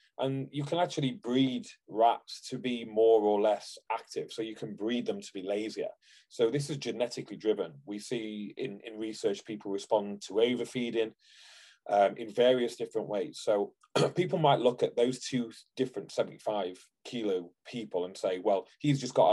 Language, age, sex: English, 30-49, male